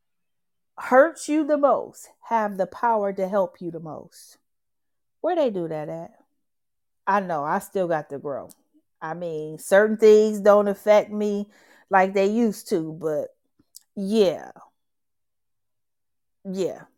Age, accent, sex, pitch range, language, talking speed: 40-59, American, female, 185-230 Hz, English, 135 wpm